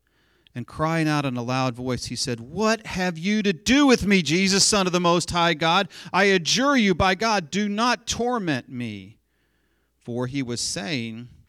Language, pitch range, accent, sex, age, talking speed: English, 105-155 Hz, American, male, 40-59, 190 wpm